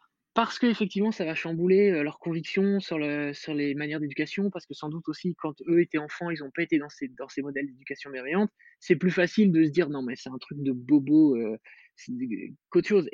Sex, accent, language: male, French, French